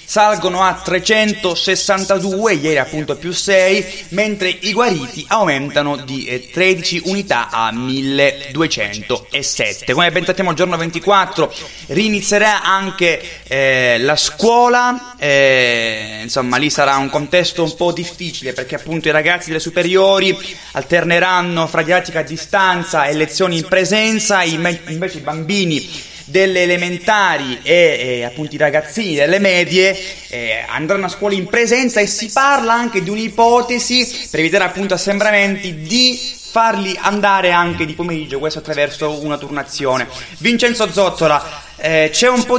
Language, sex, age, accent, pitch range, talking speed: Italian, male, 20-39, native, 155-195 Hz, 135 wpm